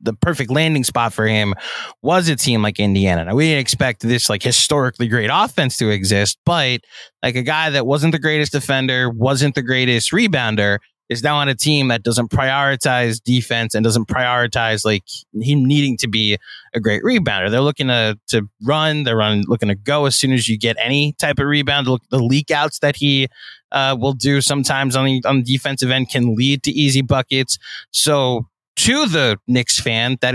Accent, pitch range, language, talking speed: American, 120-150 Hz, English, 195 wpm